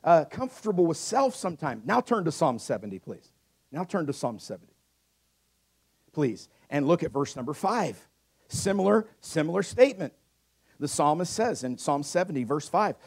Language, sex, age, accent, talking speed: English, male, 50-69, American, 155 wpm